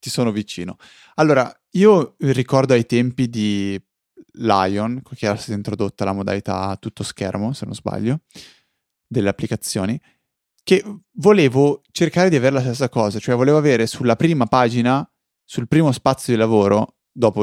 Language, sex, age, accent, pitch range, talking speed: Italian, male, 20-39, native, 105-130 Hz, 150 wpm